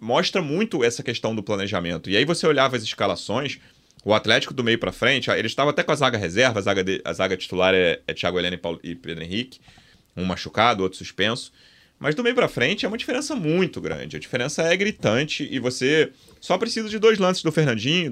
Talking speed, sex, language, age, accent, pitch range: 210 wpm, male, Portuguese, 30-49, Brazilian, 105-155 Hz